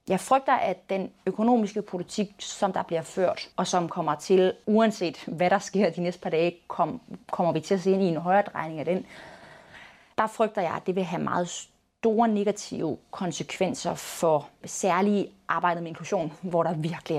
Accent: native